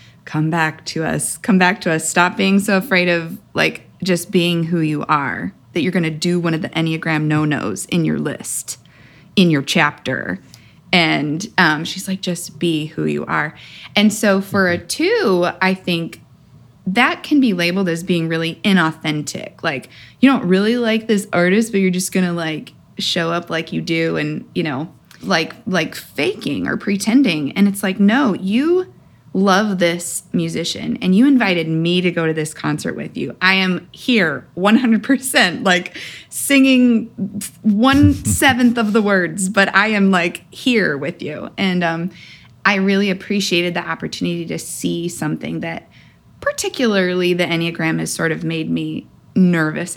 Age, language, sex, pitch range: 20-39, English, female, 160-205 Hz